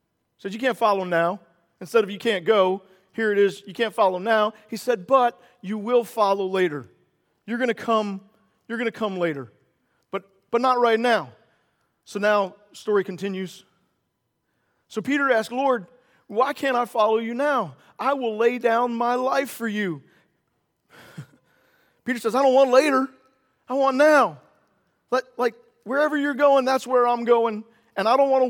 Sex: male